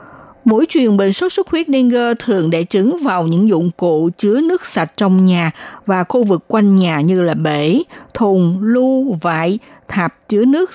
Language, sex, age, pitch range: Vietnamese, female, 60-79, 175-240 Hz